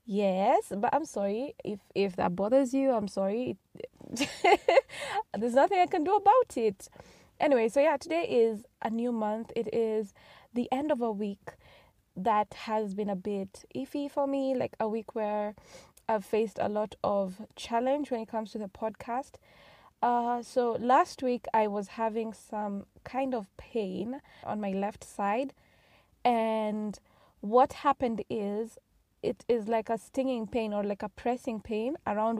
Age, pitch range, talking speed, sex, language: 20-39, 210-250 Hz, 165 wpm, female, English